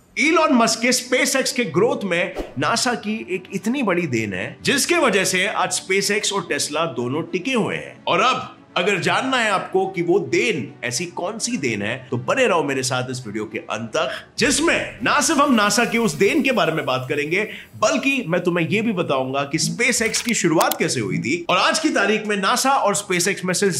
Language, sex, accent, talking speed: Hindi, male, native, 150 wpm